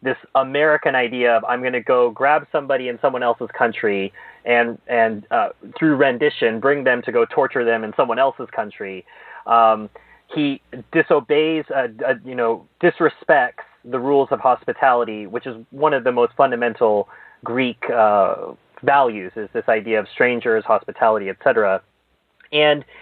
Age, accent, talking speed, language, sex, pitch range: 30-49, American, 155 wpm, English, male, 120-160 Hz